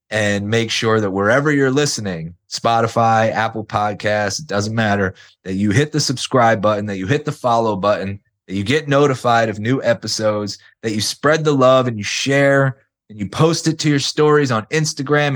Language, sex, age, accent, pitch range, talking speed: English, male, 30-49, American, 105-145 Hz, 190 wpm